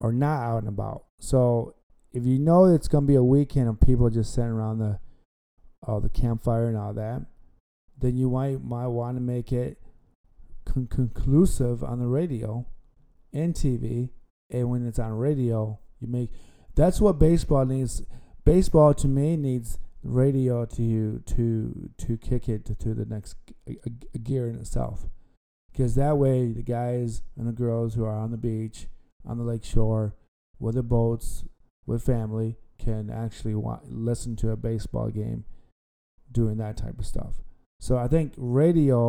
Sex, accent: male, American